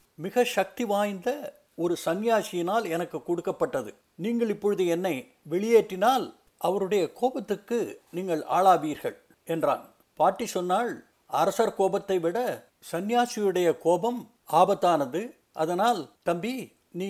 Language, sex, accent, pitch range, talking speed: Tamil, male, native, 170-230 Hz, 95 wpm